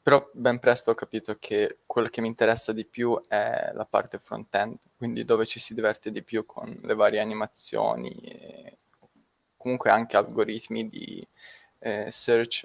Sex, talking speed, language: male, 155 wpm, Italian